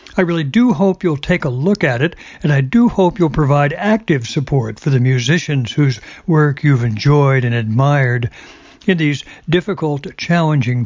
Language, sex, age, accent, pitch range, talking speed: English, male, 60-79, American, 135-175 Hz, 170 wpm